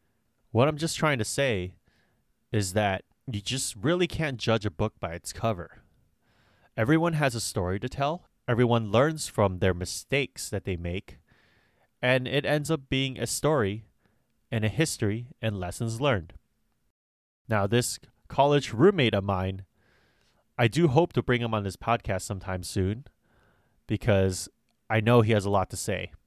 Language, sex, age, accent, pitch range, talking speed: English, male, 30-49, American, 100-125 Hz, 160 wpm